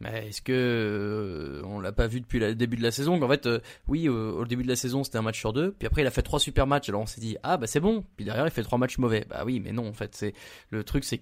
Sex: male